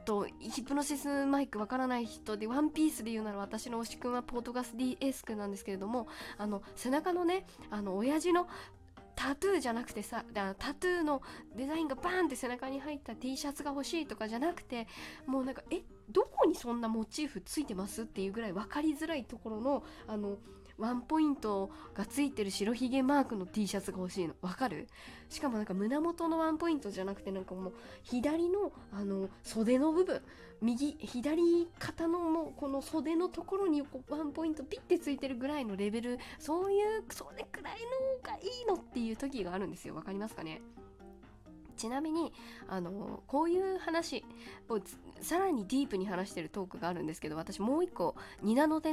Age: 20-39